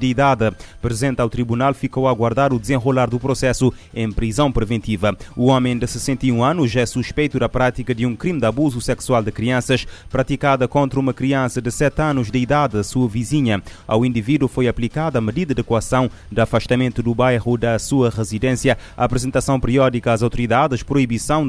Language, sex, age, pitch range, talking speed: Portuguese, male, 20-39, 115-135 Hz, 180 wpm